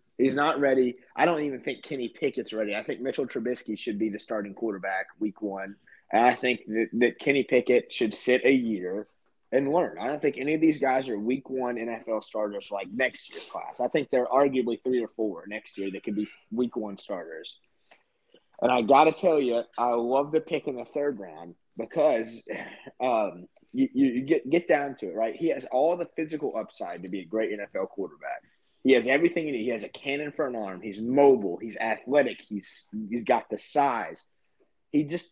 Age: 30-49